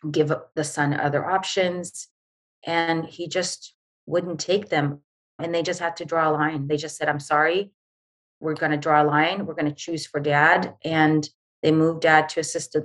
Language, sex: English, female